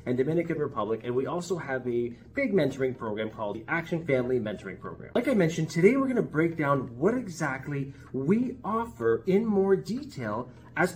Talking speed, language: 180 wpm, English